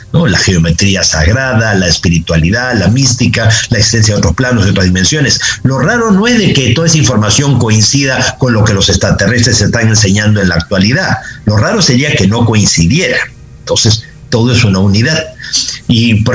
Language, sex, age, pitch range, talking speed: Spanish, male, 50-69, 105-130 Hz, 180 wpm